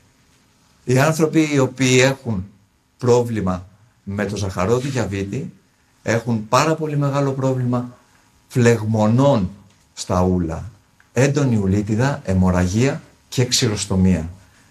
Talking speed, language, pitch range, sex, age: 100 wpm, Greek, 100-130 Hz, male, 60-79